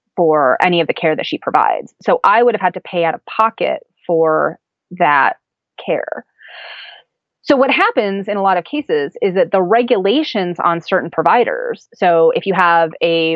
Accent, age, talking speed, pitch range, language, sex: American, 30-49, 185 wpm, 160-210 Hz, English, female